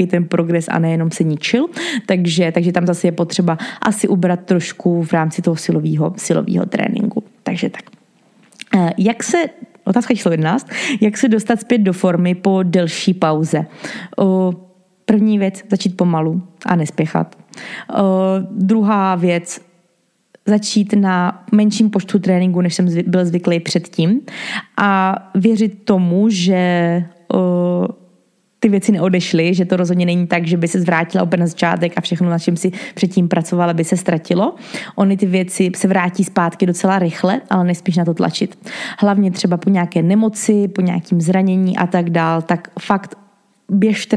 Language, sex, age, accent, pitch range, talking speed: Czech, female, 20-39, native, 175-200 Hz, 155 wpm